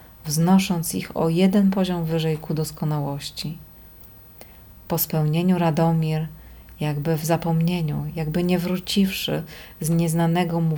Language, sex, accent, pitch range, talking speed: Polish, female, native, 140-175 Hz, 110 wpm